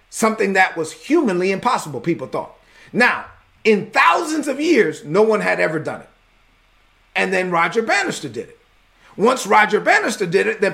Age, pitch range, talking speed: 40-59, 205-260 Hz, 170 wpm